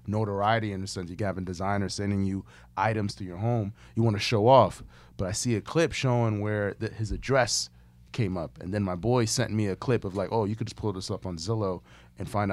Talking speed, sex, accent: 250 wpm, male, American